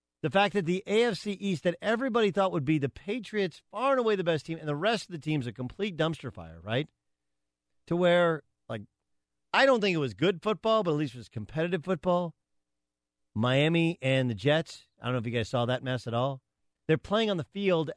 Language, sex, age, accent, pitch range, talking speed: English, male, 40-59, American, 125-190 Hz, 225 wpm